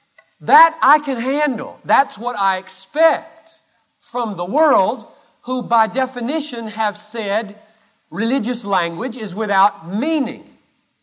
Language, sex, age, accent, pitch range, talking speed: English, male, 40-59, American, 170-265 Hz, 115 wpm